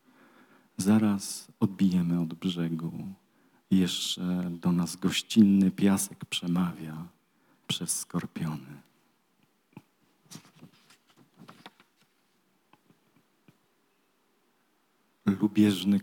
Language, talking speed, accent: Polish, 50 wpm, native